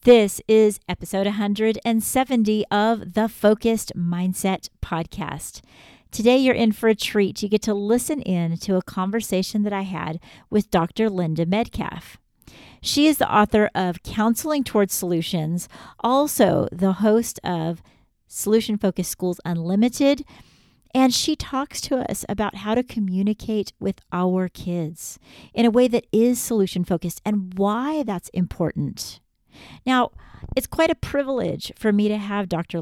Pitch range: 175-225 Hz